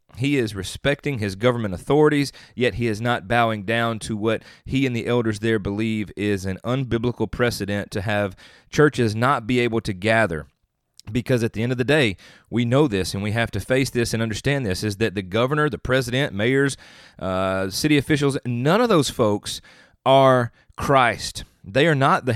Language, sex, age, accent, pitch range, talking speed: English, male, 30-49, American, 105-135 Hz, 190 wpm